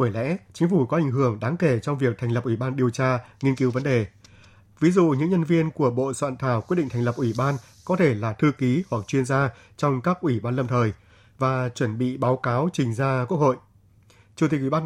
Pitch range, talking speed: 120-145 Hz, 255 wpm